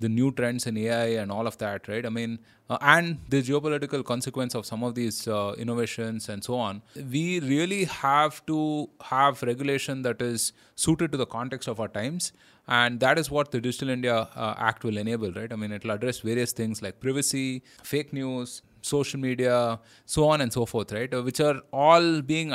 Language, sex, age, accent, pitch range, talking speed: English, male, 20-39, Indian, 115-140 Hz, 200 wpm